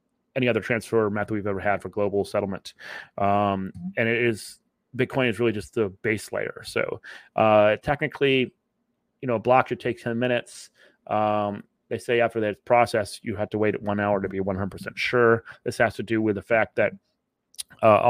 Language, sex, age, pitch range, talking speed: English, male, 30-49, 110-125 Hz, 190 wpm